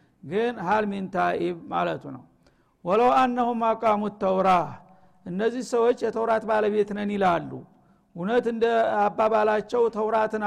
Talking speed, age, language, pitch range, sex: 105 wpm, 50-69, Amharic, 210-230 Hz, male